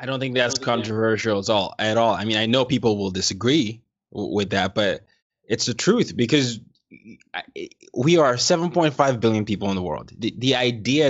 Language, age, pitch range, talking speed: English, 20-39, 110-145 Hz, 185 wpm